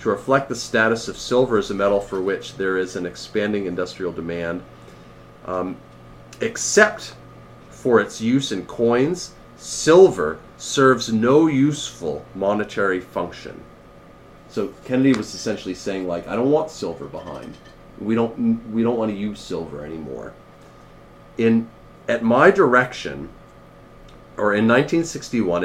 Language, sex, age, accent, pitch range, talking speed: English, male, 40-59, American, 85-125 Hz, 135 wpm